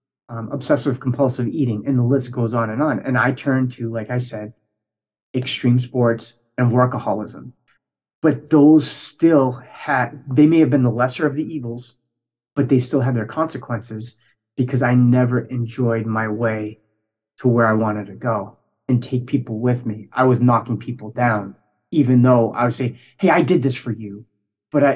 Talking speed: 180 wpm